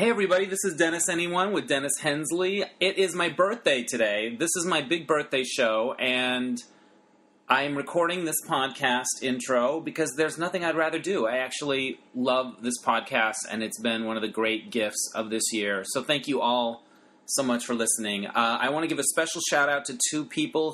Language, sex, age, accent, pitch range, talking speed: English, male, 30-49, American, 120-145 Hz, 200 wpm